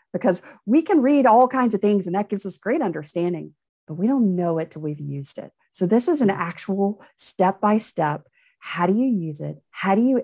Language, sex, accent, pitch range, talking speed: English, female, American, 155-210 Hz, 215 wpm